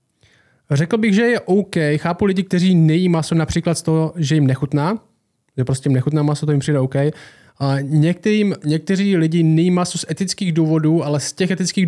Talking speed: 180 wpm